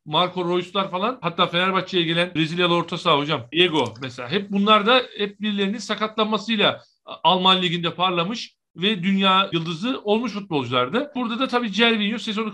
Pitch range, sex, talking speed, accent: 170-210 Hz, male, 150 wpm, native